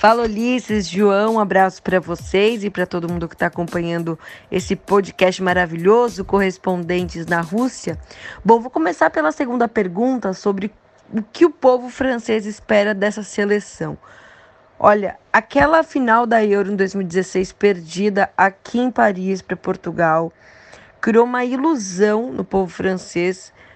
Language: Portuguese